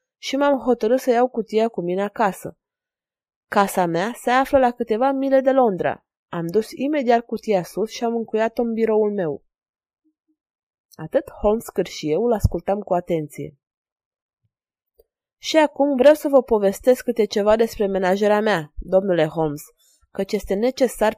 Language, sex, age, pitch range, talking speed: Romanian, female, 20-39, 200-255 Hz, 150 wpm